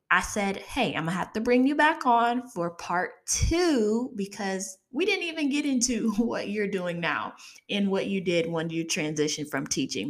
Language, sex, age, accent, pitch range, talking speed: English, female, 20-39, American, 170-230 Hz, 195 wpm